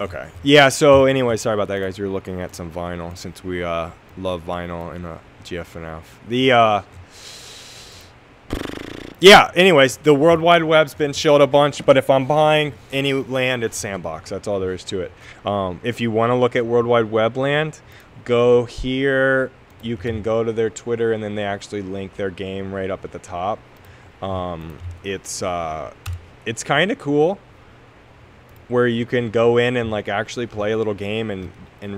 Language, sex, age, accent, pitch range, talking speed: English, male, 20-39, American, 95-130 Hz, 190 wpm